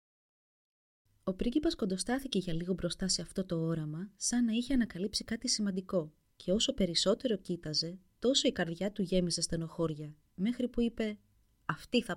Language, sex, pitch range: Greek, female, 150-210 Hz